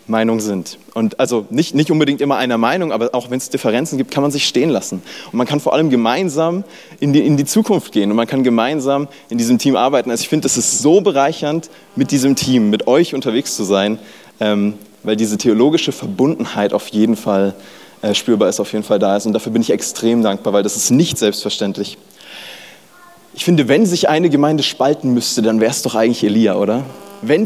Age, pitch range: 20-39, 115-155 Hz